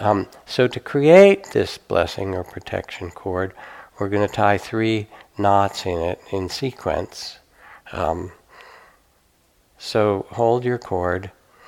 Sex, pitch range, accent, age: male, 95-115 Hz, American, 60-79